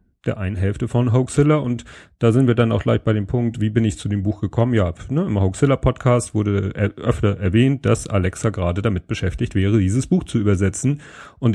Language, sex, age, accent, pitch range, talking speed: German, male, 30-49, German, 100-120 Hz, 210 wpm